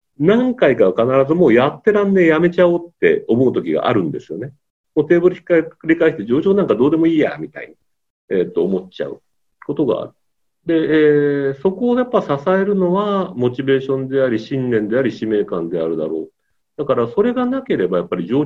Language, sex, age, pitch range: Japanese, male, 40-59, 135-220 Hz